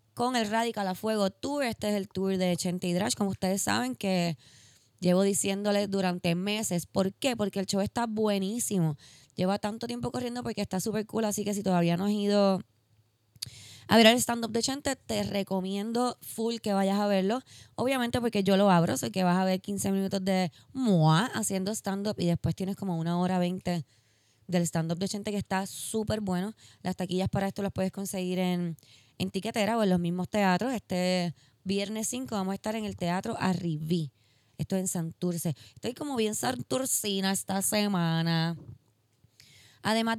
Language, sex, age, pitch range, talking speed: Spanish, female, 20-39, 175-215 Hz, 185 wpm